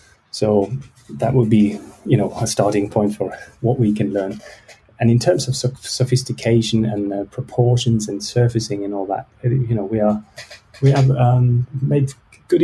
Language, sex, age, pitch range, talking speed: English, male, 30-49, 105-130 Hz, 170 wpm